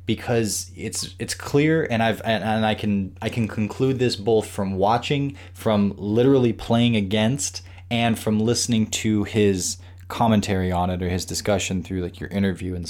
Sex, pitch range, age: male, 95-115 Hz, 20-39